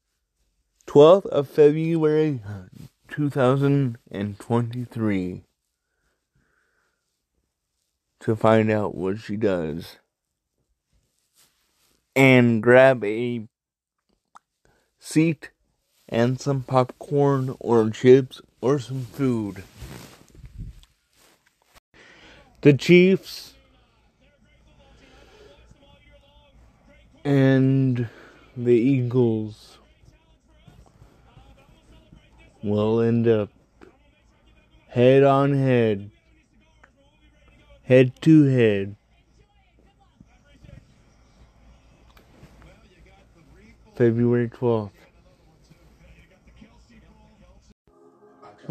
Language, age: English, 30-49